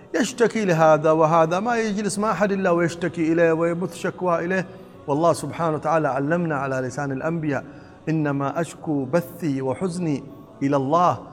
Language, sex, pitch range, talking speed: Arabic, male, 160-210 Hz, 140 wpm